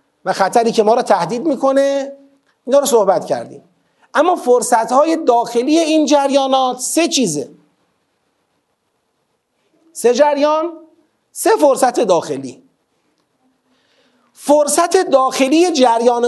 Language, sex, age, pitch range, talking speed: Persian, male, 40-59, 205-275 Hz, 90 wpm